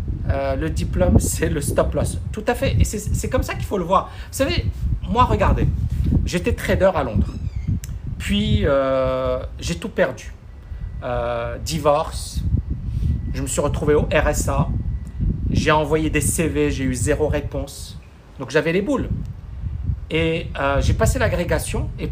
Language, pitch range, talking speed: French, 85-140 Hz, 155 wpm